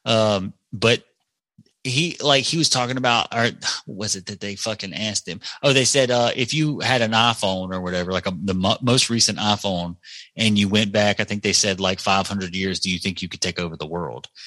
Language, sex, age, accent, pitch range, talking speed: English, male, 30-49, American, 100-130 Hz, 215 wpm